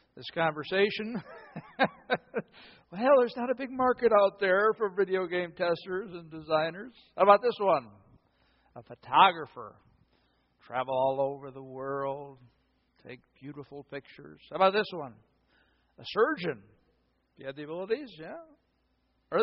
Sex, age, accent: male, 60-79, American